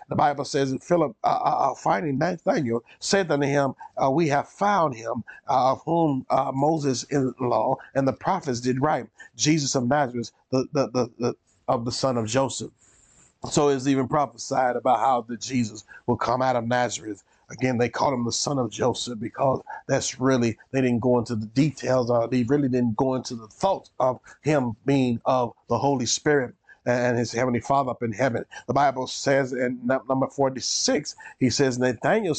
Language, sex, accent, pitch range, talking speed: English, male, American, 125-145 Hz, 185 wpm